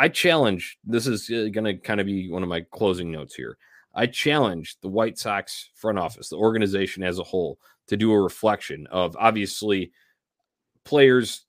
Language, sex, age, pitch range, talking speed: English, male, 30-49, 90-115 Hz, 180 wpm